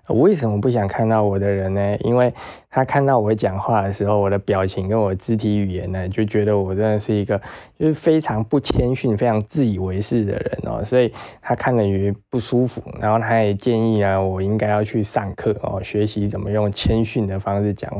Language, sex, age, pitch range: Chinese, male, 20-39, 100-125 Hz